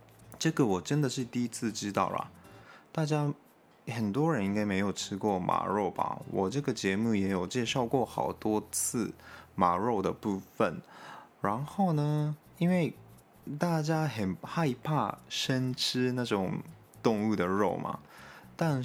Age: 20-39